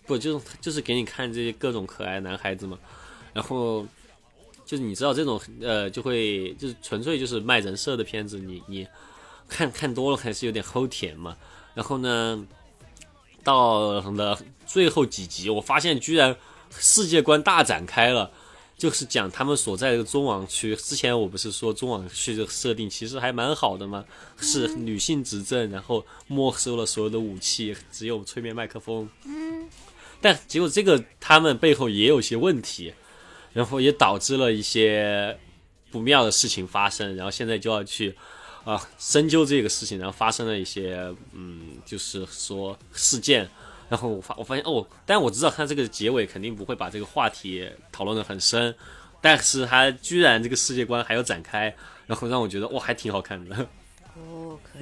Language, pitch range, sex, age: Chinese, 100-130 Hz, male, 20-39